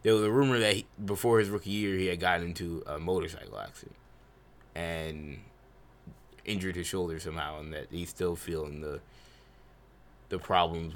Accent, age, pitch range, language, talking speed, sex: American, 20-39, 85-100 Hz, English, 165 wpm, male